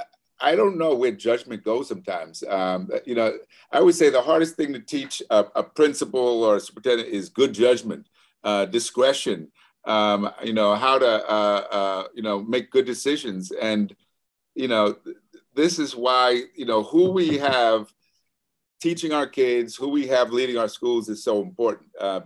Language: English